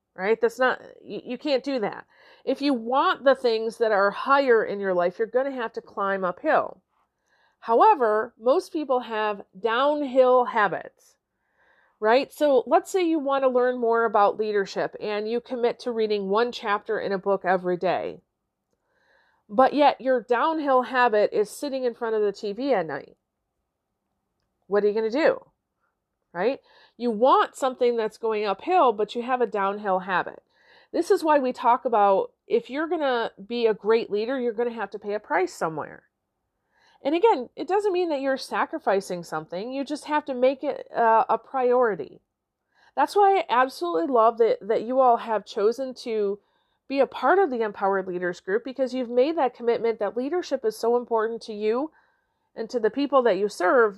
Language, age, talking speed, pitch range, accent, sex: English, 40-59, 185 wpm, 215-280 Hz, American, female